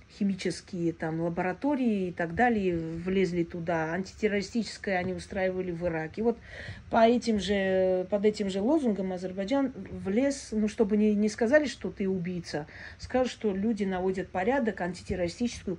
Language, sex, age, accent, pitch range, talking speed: Russian, female, 40-59, native, 160-210 Hz, 140 wpm